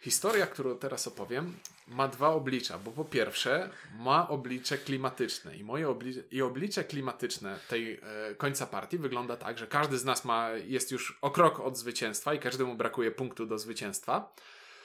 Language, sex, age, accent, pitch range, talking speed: Polish, male, 20-39, native, 120-175 Hz, 170 wpm